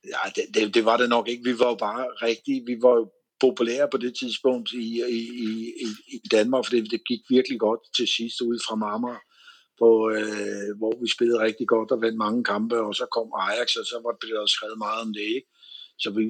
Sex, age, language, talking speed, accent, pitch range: male, 60-79, Danish, 215 wpm, native, 110-125 Hz